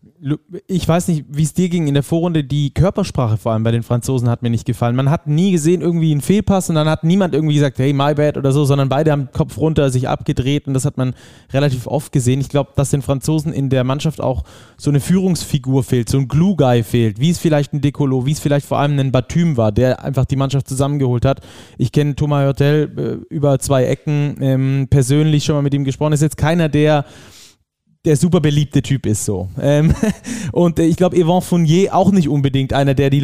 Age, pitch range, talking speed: 20-39, 130-155 Hz, 225 wpm